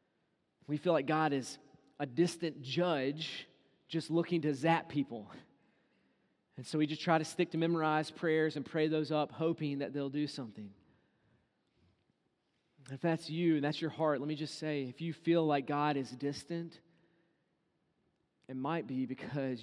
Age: 30-49